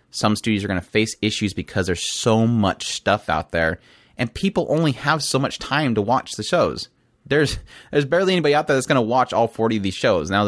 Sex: male